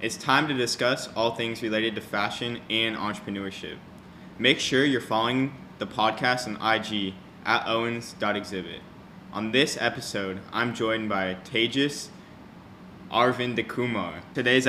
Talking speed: 125 wpm